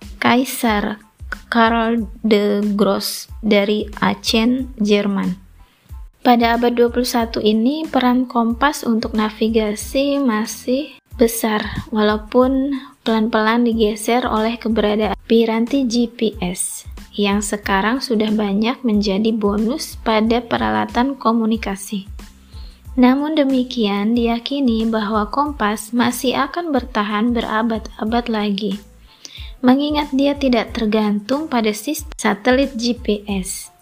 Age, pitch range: 20-39, 215-250 Hz